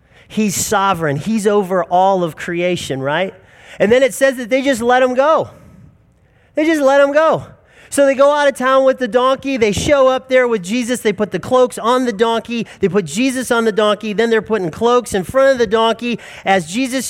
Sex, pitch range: male, 165-230 Hz